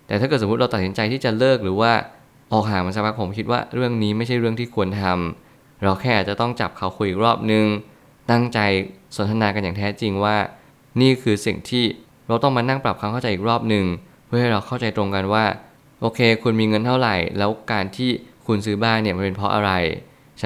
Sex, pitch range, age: male, 100-120 Hz, 20-39